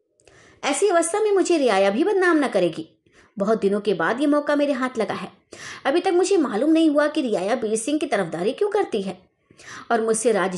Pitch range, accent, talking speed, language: 210-320 Hz, native, 210 wpm, Hindi